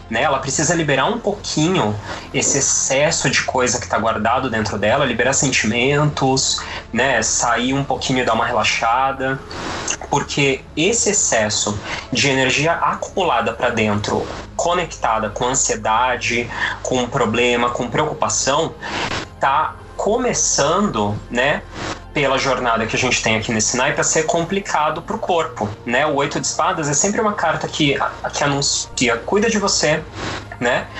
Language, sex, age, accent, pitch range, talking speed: Portuguese, male, 20-39, Brazilian, 115-155 Hz, 145 wpm